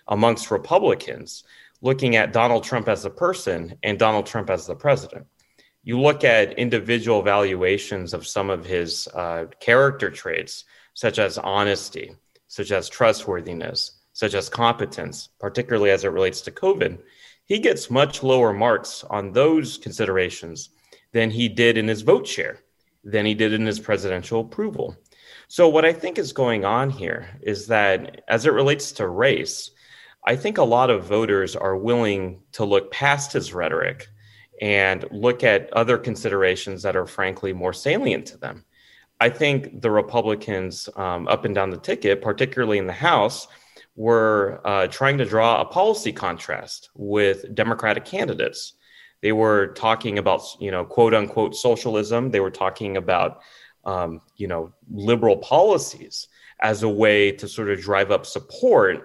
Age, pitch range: 30-49, 100-120 Hz